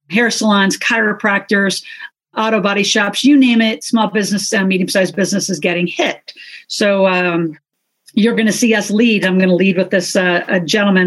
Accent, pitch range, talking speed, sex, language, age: American, 180-210 Hz, 180 wpm, female, English, 50-69